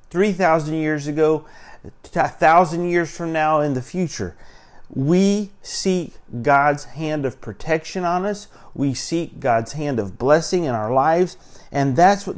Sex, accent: male, American